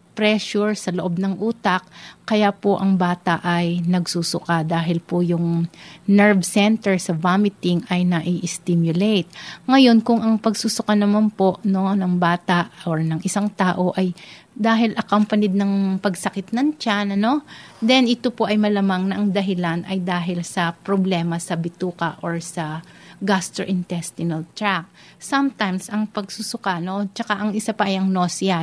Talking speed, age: 145 wpm, 30-49